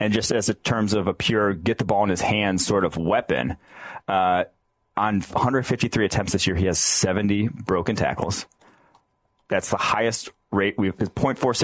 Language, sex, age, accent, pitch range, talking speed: English, male, 30-49, American, 90-110 Hz, 150 wpm